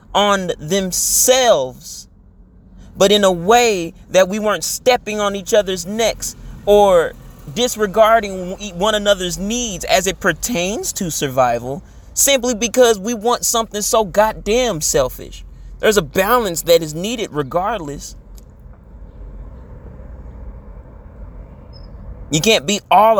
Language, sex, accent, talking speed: English, male, American, 110 wpm